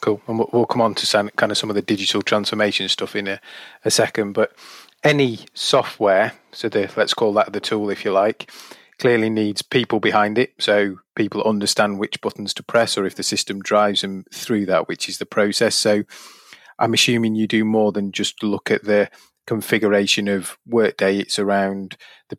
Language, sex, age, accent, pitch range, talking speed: English, male, 30-49, British, 100-110 Hz, 195 wpm